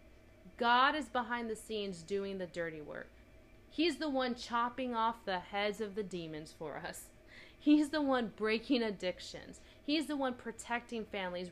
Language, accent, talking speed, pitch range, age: English, American, 160 wpm, 185-240 Hz, 30-49